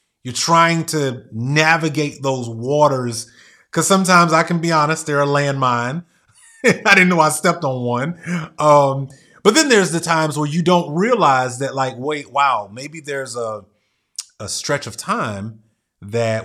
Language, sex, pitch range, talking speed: English, male, 110-155 Hz, 160 wpm